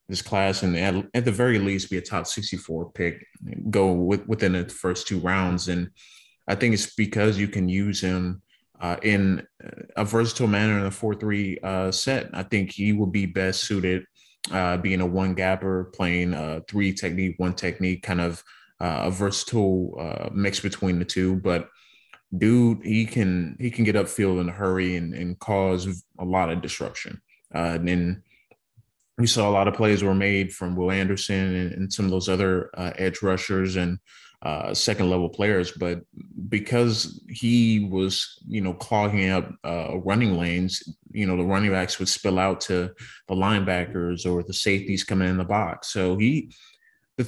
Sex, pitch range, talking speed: male, 90-100 Hz, 185 wpm